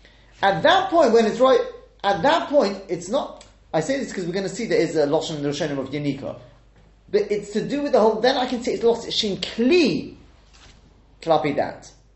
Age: 30-49